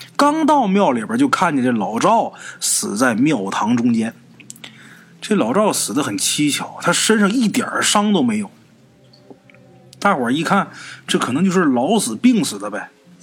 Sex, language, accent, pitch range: male, Chinese, native, 175-270 Hz